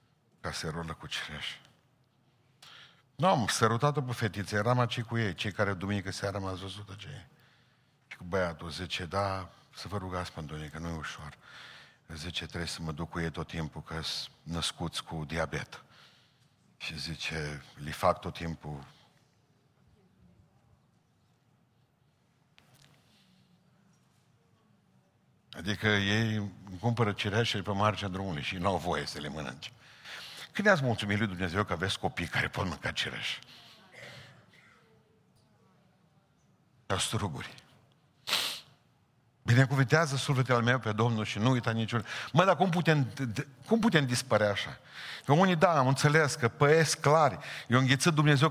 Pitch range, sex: 95-140 Hz, male